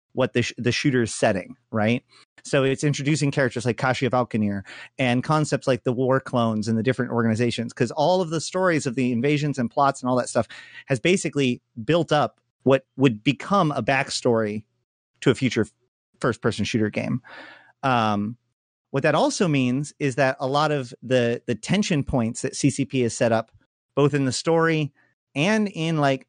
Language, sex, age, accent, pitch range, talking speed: English, male, 30-49, American, 120-145 Hz, 185 wpm